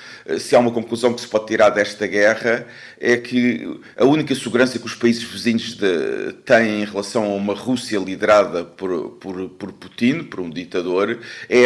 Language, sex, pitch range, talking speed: Portuguese, male, 110-135 Hz, 180 wpm